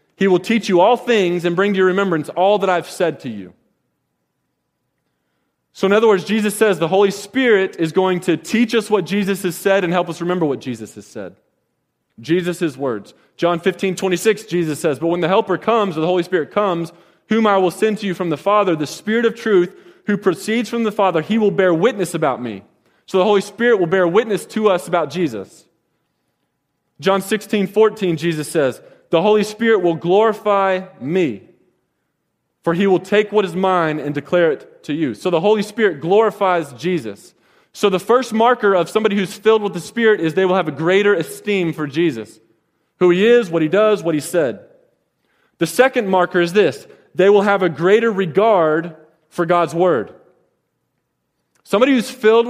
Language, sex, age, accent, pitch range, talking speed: English, male, 20-39, American, 170-210 Hz, 195 wpm